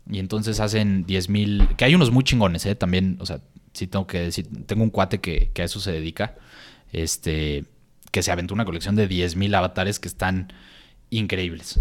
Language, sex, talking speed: Spanish, male, 195 wpm